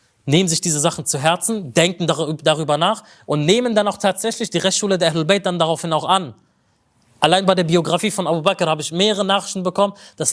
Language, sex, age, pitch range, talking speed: German, male, 20-39, 155-200 Hz, 200 wpm